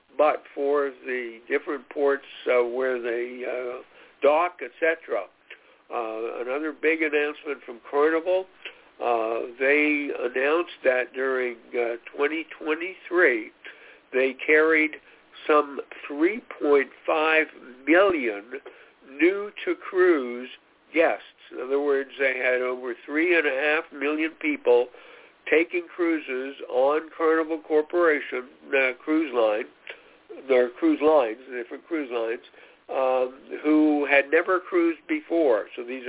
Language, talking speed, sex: English, 105 wpm, male